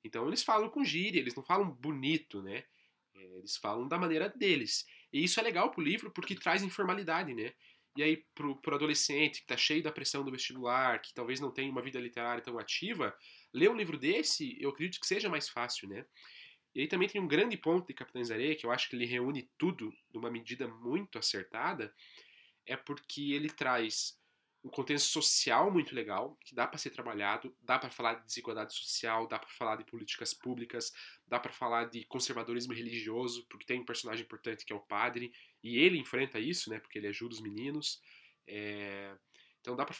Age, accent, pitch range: 20-39, Brazilian, 115-160 Hz